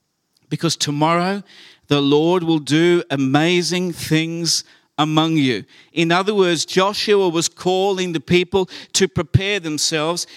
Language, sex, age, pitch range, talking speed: English, male, 50-69, 160-195 Hz, 120 wpm